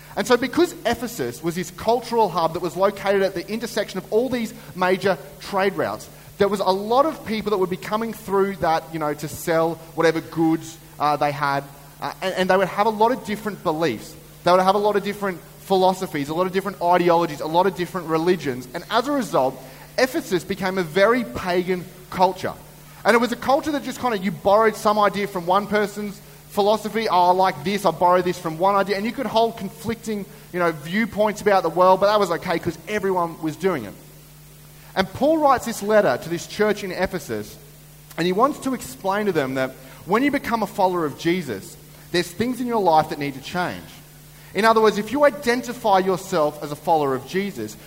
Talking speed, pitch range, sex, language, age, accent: 215 wpm, 160-210 Hz, male, English, 30-49, Australian